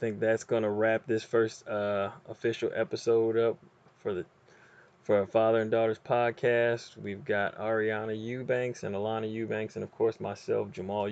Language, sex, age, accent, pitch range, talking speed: English, male, 20-39, American, 95-115 Hz, 160 wpm